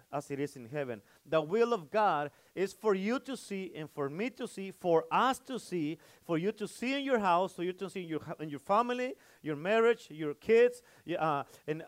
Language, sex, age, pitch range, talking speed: Spanish, male, 40-59, 160-210 Hz, 225 wpm